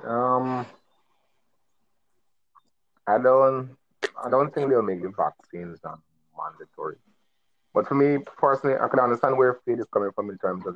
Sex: male